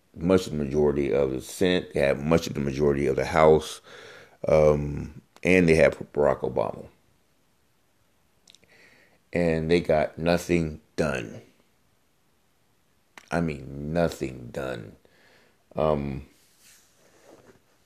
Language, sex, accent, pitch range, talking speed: English, male, American, 80-115 Hz, 110 wpm